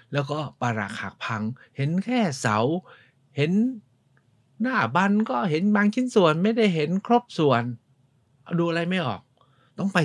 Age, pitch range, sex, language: 60-79, 110-145 Hz, male, Thai